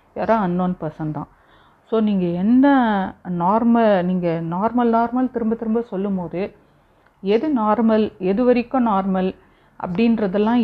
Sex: female